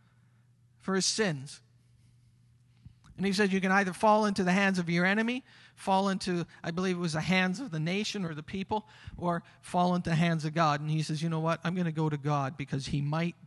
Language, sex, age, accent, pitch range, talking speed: English, male, 40-59, American, 130-180 Hz, 230 wpm